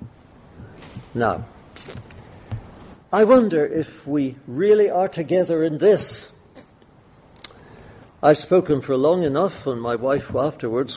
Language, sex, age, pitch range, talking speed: English, male, 60-79, 130-185 Hz, 105 wpm